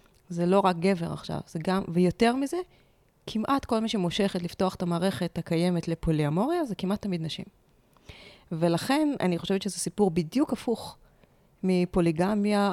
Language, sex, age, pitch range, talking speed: Hebrew, female, 20-39, 175-205 Hz, 135 wpm